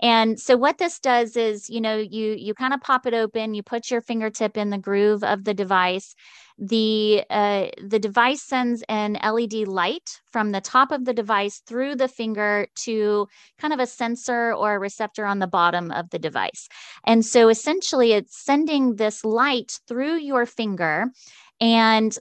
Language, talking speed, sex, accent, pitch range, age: English, 180 wpm, female, American, 195-240 Hz, 20-39